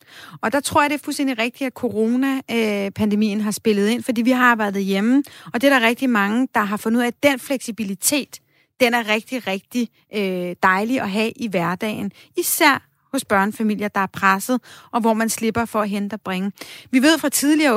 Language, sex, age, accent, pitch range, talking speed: Danish, female, 30-49, native, 215-270 Hz, 205 wpm